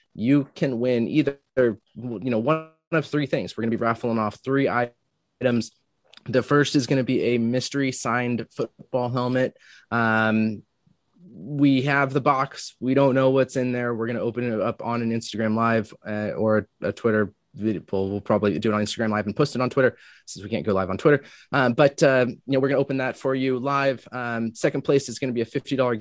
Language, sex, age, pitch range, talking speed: English, male, 20-39, 110-135 Hz, 225 wpm